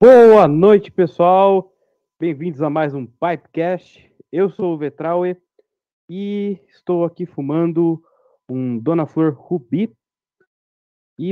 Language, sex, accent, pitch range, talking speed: Portuguese, male, Brazilian, 140-190 Hz, 110 wpm